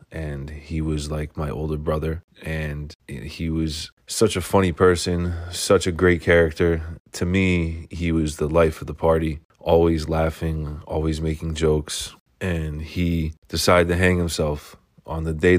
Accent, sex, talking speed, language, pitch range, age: American, male, 160 wpm, English, 80-90 Hz, 20-39